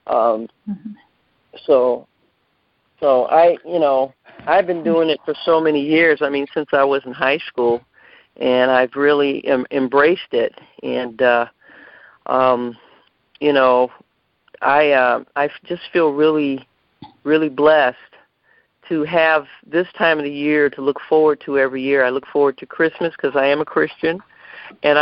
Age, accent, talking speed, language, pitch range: 40-59, American, 155 wpm, English, 135-160 Hz